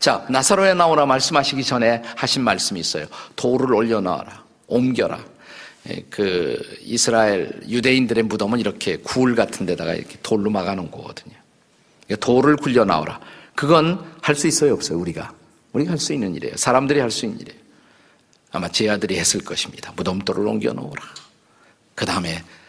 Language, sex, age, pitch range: Korean, male, 50-69, 115-155 Hz